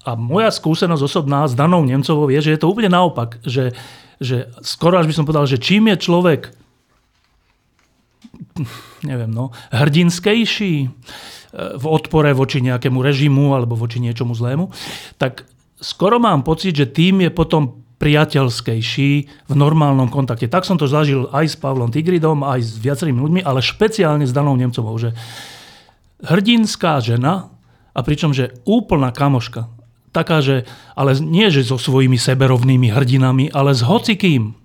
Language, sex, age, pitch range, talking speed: Slovak, male, 40-59, 125-160 Hz, 145 wpm